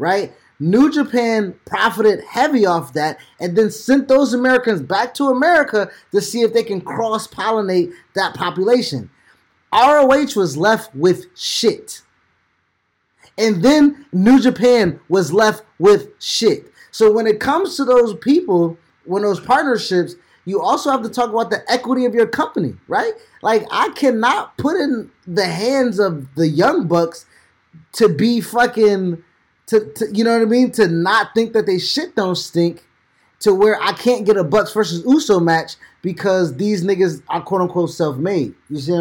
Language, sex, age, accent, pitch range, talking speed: English, male, 20-39, American, 175-245 Hz, 165 wpm